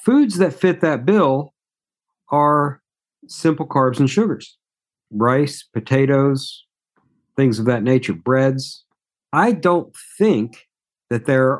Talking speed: 115 wpm